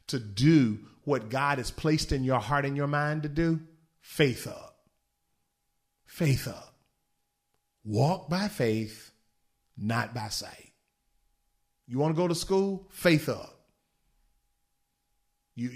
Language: English